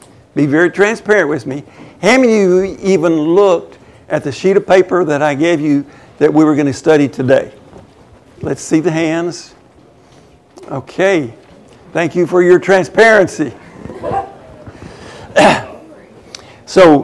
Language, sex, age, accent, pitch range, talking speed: English, male, 60-79, American, 150-190 Hz, 135 wpm